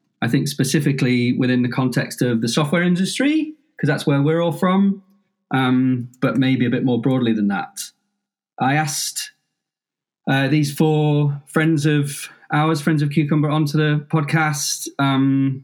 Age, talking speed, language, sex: 30-49, 155 wpm, English, male